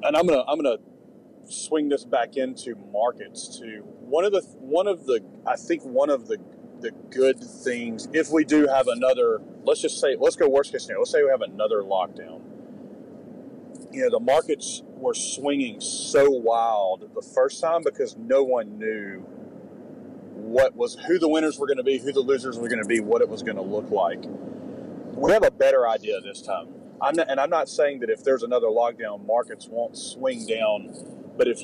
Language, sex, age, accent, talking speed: English, male, 30-49, American, 200 wpm